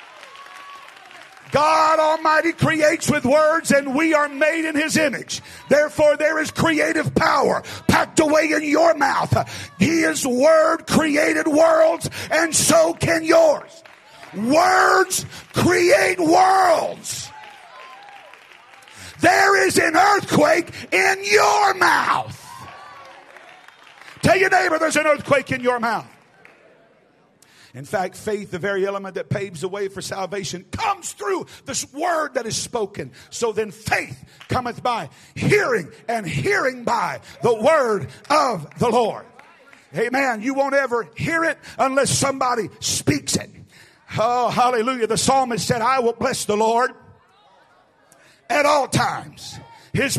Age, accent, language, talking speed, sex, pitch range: 50-69, American, English, 130 wpm, male, 230-320 Hz